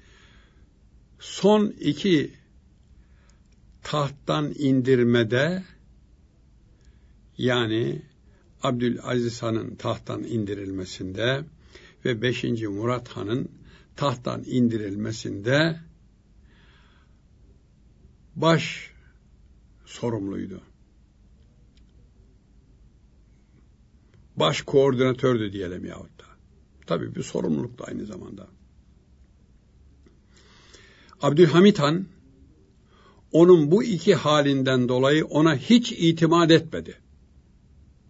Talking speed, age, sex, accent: 60 wpm, 60-79, male, native